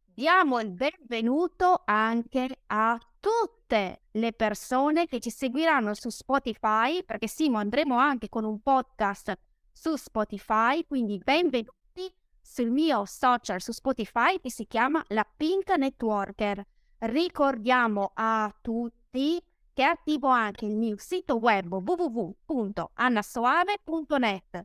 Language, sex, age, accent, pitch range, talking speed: Italian, female, 20-39, native, 215-280 Hz, 110 wpm